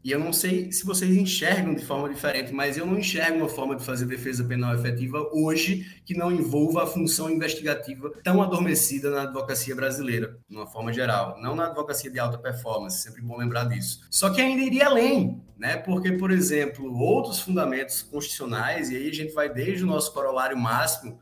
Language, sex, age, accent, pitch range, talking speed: Portuguese, male, 20-39, Brazilian, 125-175 Hz, 200 wpm